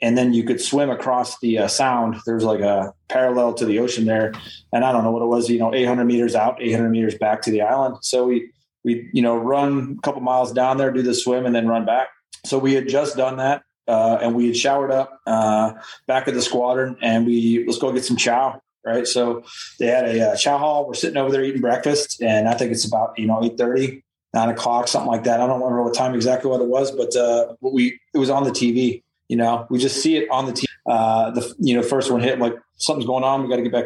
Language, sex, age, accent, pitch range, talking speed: English, male, 30-49, American, 115-130 Hz, 260 wpm